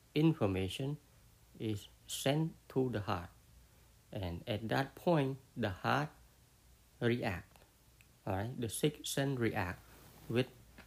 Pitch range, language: 100-130 Hz, English